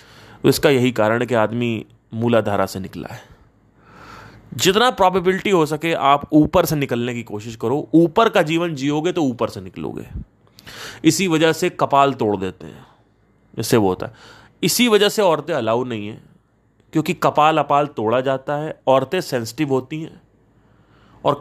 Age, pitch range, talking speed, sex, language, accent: 30-49, 115-155 Hz, 165 wpm, male, Hindi, native